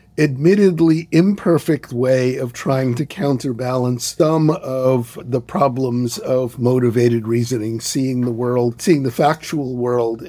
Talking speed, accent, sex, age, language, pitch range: 120 wpm, American, male, 50-69, English, 120-145 Hz